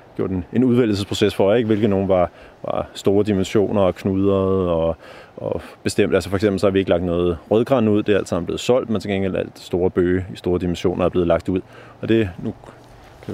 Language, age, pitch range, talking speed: Danish, 30-49, 100-130 Hz, 225 wpm